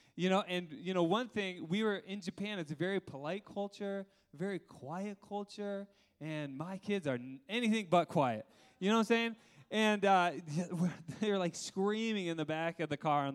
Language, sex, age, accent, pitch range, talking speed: English, male, 20-39, American, 150-200 Hz, 200 wpm